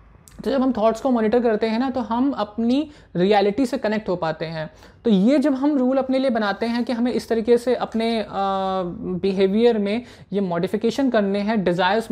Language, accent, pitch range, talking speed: Hindi, native, 195-235 Hz, 205 wpm